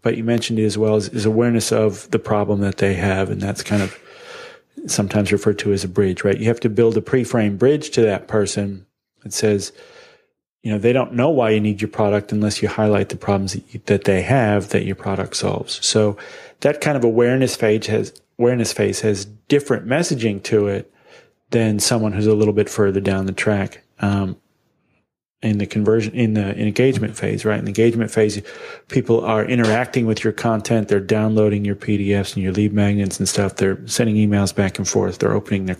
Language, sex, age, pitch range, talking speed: English, male, 30-49, 100-115 Hz, 210 wpm